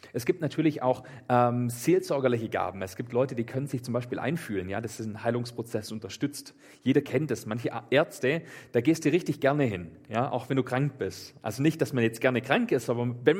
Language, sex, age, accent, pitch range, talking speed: German, male, 40-59, German, 115-145 Hz, 220 wpm